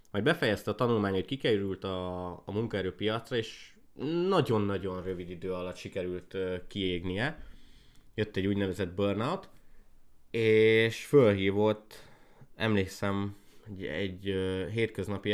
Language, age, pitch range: Hungarian, 20-39, 95-110 Hz